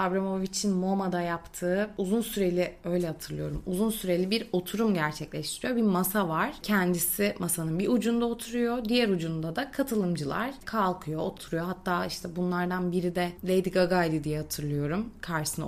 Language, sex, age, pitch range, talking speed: Turkish, female, 30-49, 175-225 Hz, 140 wpm